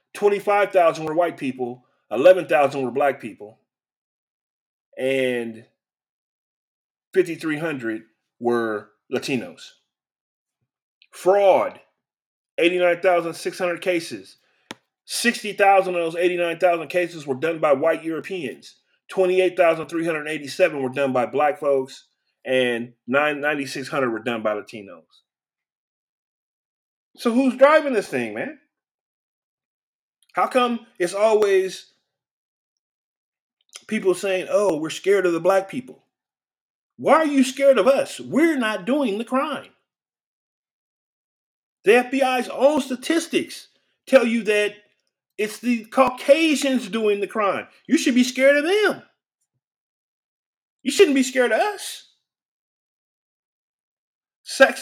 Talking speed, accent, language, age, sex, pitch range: 105 wpm, American, English, 30-49, male, 160-250 Hz